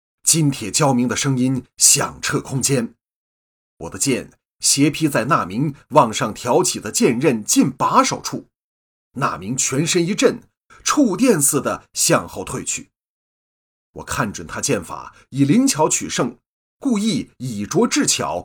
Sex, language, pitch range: male, Chinese, 105-170 Hz